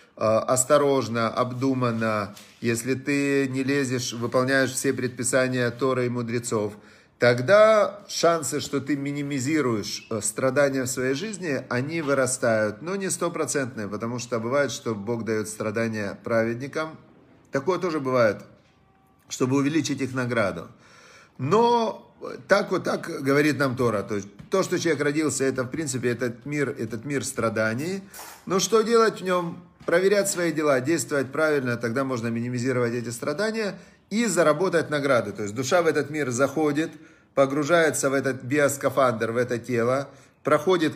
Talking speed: 135 wpm